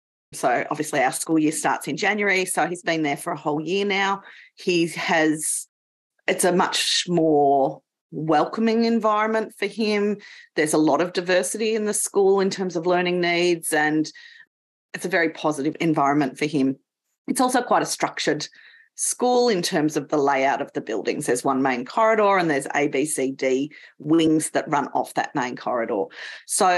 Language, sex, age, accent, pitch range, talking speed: English, female, 30-49, Australian, 155-220 Hz, 175 wpm